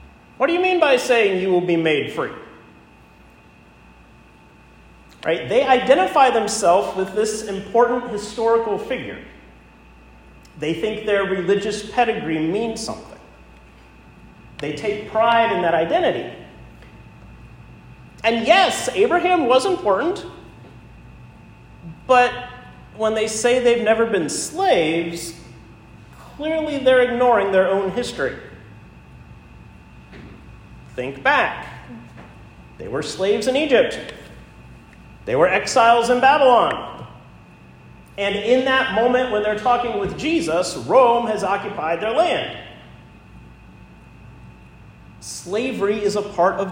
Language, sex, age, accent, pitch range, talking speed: English, male, 40-59, American, 155-245 Hz, 105 wpm